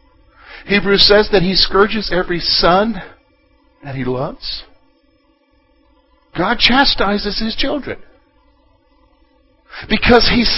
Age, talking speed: 50-69, 90 wpm